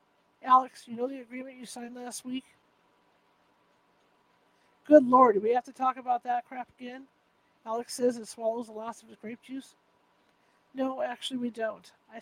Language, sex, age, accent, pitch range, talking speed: English, male, 50-69, American, 225-260 Hz, 170 wpm